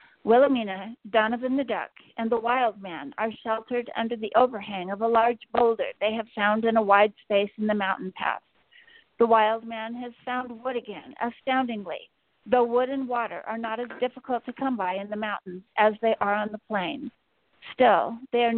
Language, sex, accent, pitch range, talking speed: English, female, American, 215-260 Hz, 190 wpm